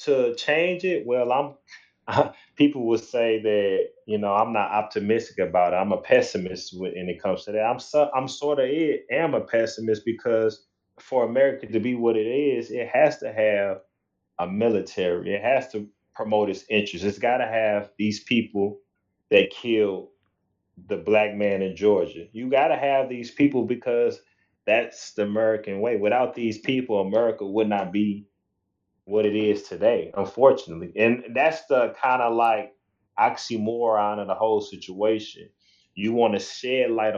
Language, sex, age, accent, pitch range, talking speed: English, male, 30-49, American, 100-125 Hz, 170 wpm